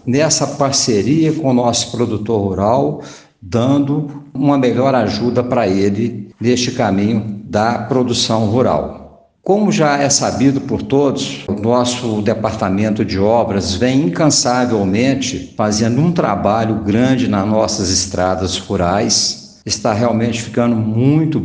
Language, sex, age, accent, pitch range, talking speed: Portuguese, male, 60-79, Brazilian, 105-130 Hz, 120 wpm